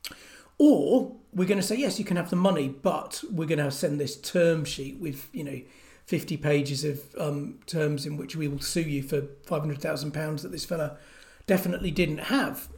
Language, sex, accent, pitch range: English, male, British, 150-185 Hz